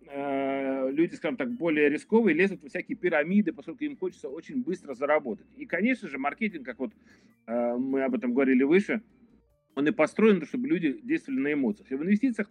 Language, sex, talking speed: Russian, male, 175 wpm